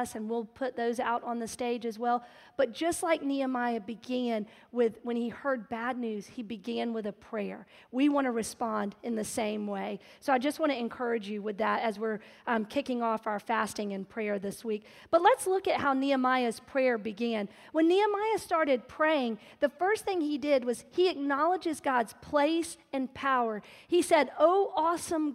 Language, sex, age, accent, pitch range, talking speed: English, female, 40-59, American, 240-335 Hz, 195 wpm